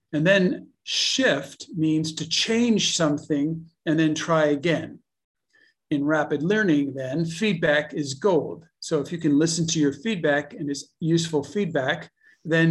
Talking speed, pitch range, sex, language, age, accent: 145 wpm, 140-165 Hz, male, English, 50-69, American